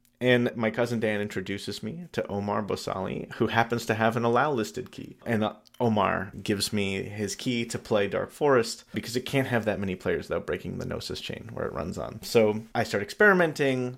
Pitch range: 110-130 Hz